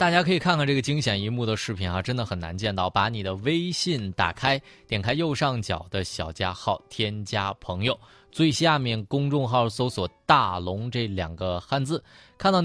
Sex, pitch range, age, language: male, 100-150 Hz, 20-39, Chinese